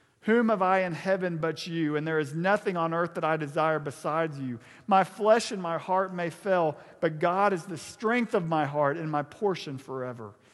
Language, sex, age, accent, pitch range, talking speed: English, male, 50-69, American, 140-200 Hz, 210 wpm